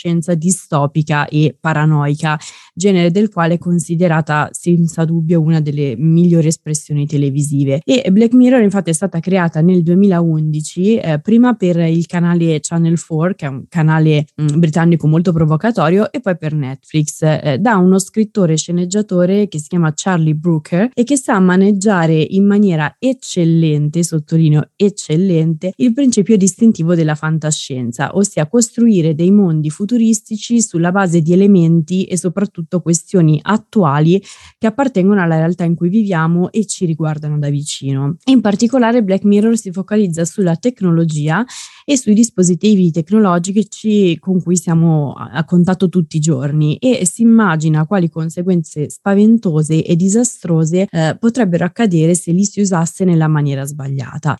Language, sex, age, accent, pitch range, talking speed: Italian, female, 20-39, native, 160-205 Hz, 145 wpm